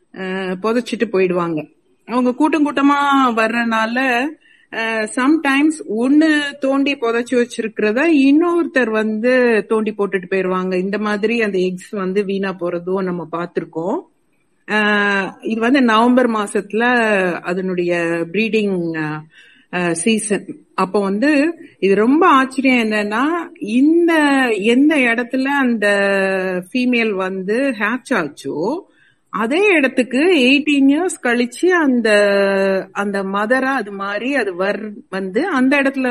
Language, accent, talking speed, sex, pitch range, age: Tamil, native, 95 wpm, female, 195-270 Hz, 50-69